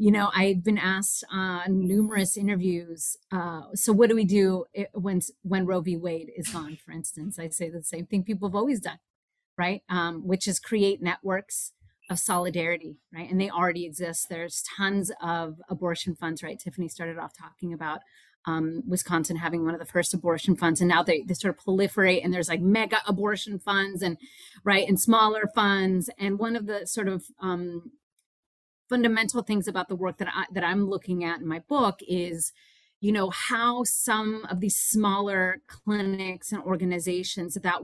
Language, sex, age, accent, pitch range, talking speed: English, female, 30-49, American, 170-205 Hz, 180 wpm